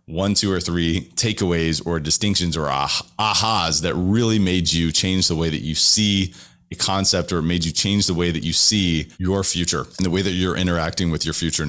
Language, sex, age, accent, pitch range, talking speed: English, male, 30-49, American, 85-105 Hz, 215 wpm